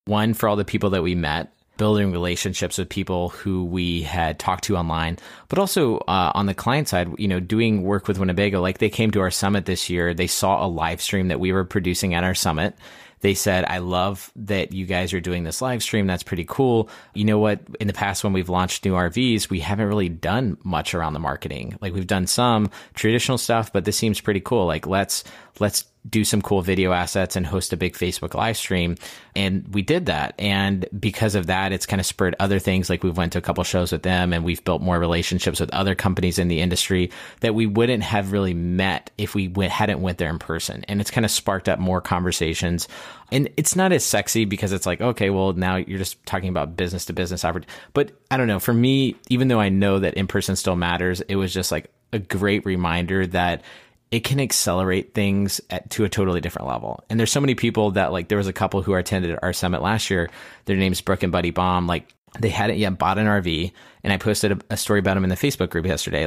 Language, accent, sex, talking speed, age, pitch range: English, American, male, 235 wpm, 30-49, 90-105 Hz